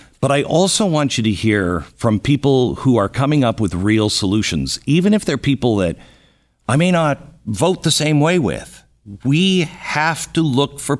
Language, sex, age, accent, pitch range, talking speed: English, male, 50-69, American, 100-145 Hz, 185 wpm